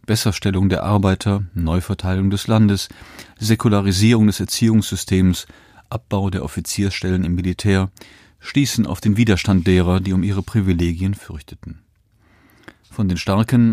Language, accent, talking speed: German, German, 120 wpm